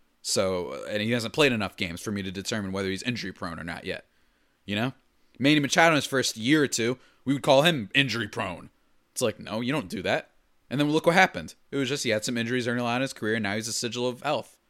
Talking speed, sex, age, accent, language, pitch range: 265 wpm, male, 30-49, American, English, 110-155 Hz